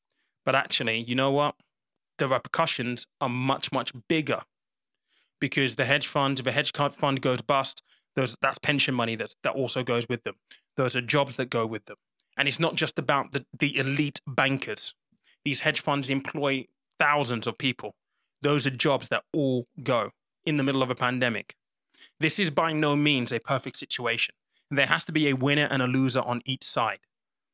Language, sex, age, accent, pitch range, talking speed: English, male, 20-39, British, 135-160 Hz, 185 wpm